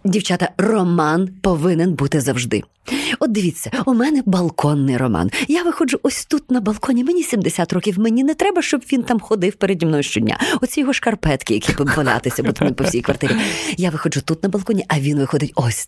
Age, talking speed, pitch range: 20-39, 185 wpm, 160-235 Hz